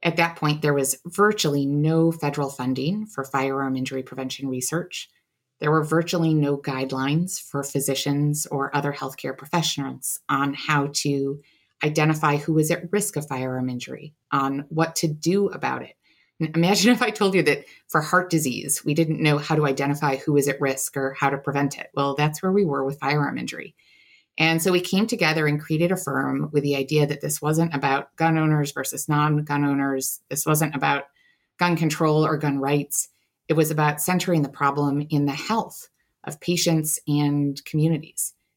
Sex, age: female, 30-49